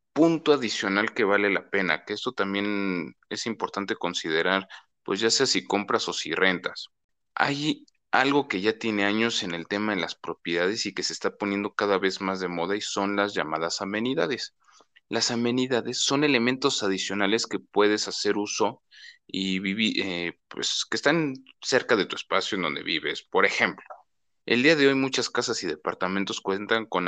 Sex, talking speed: male, 180 wpm